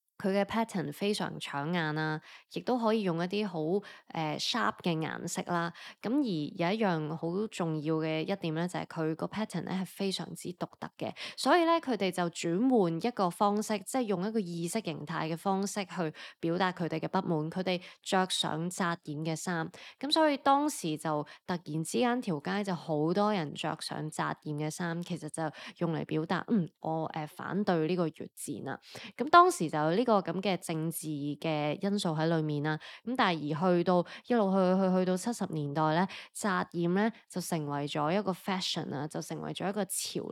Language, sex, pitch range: Chinese, female, 160-210 Hz